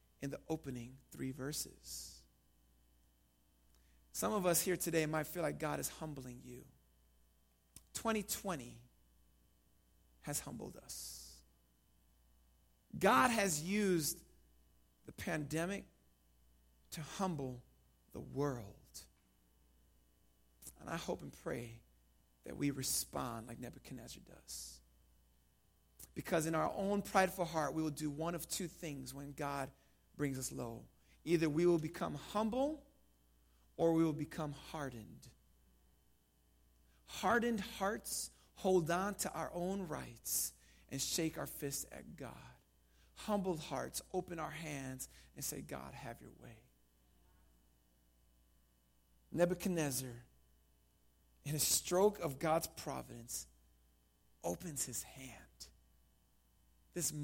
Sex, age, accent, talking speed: male, 40-59, American, 110 wpm